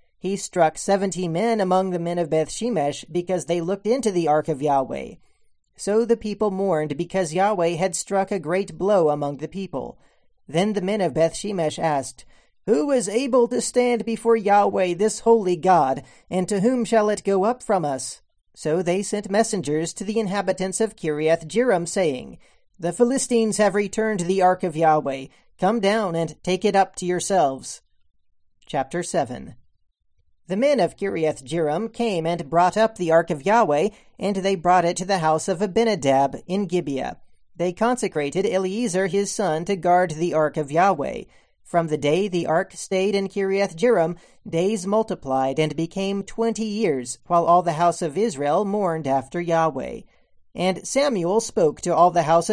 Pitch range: 165-210 Hz